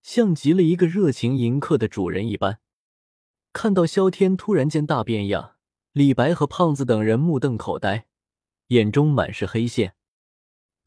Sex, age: male, 20-39